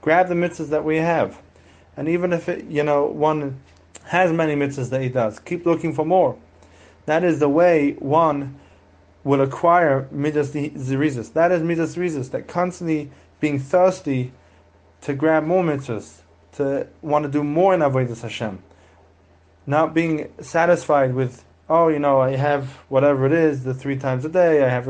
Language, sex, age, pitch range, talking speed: English, male, 20-39, 130-155 Hz, 165 wpm